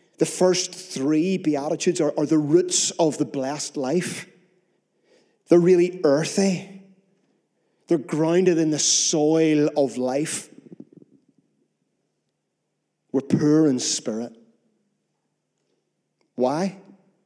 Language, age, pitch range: English, 40-59, 150-190 Hz